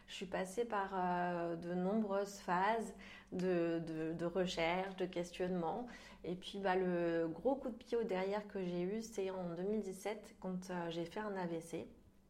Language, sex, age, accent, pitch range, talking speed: French, female, 20-39, French, 175-200 Hz, 165 wpm